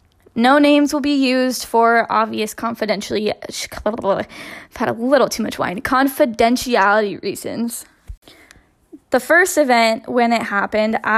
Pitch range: 215-255 Hz